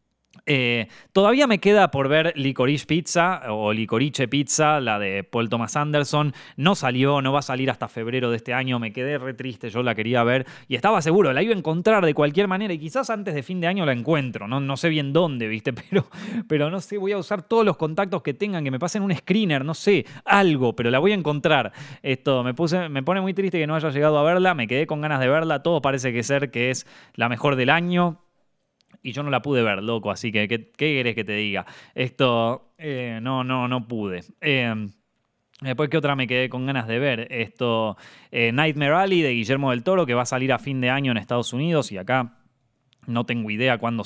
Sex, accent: male, Argentinian